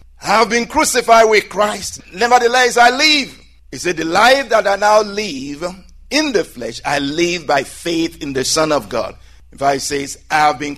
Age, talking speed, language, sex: 50-69, 195 wpm, English, male